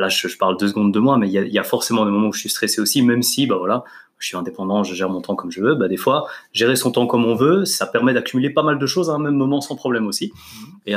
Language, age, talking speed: French, 30-49, 325 wpm